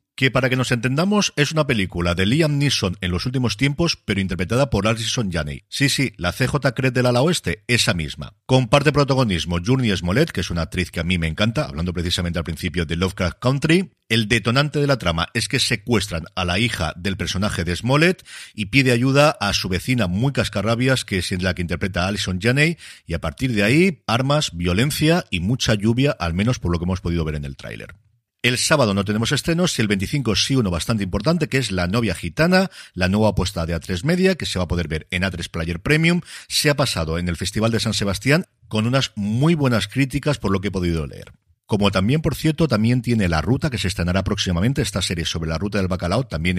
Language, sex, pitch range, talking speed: Spanish, male, 90-135 Hz, 225 wpm